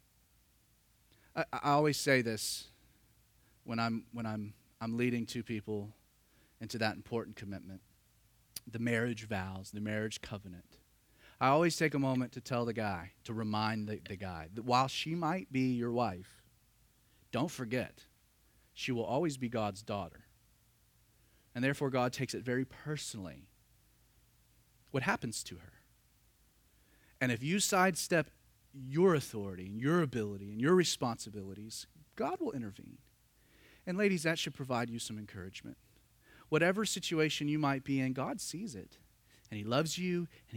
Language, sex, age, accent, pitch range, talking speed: English, male, 30-49, American, 110-160 Hz, 145 wpm